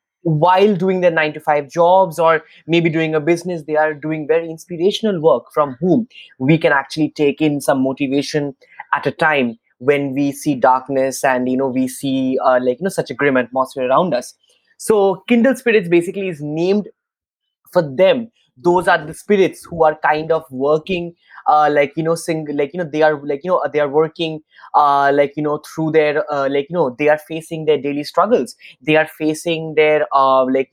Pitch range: 135-170 Hz